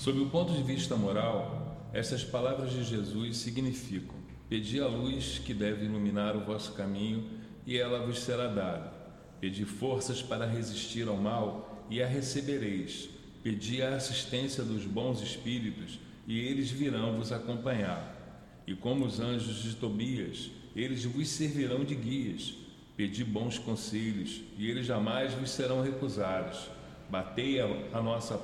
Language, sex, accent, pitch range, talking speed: Portuguese, male, Brazilian, 105-130 Hz, 145 wpm